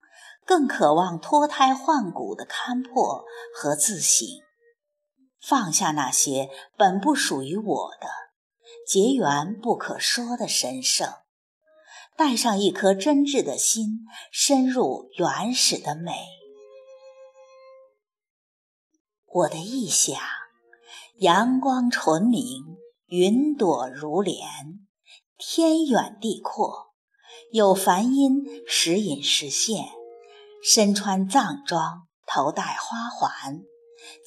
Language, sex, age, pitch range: Chinese, female, 50-69, 190-295 Hz